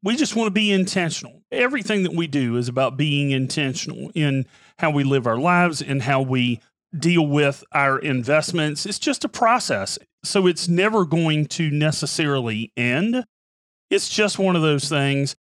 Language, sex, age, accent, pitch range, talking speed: English, male, 40-59, American, 145-190 Hz, 170 wpm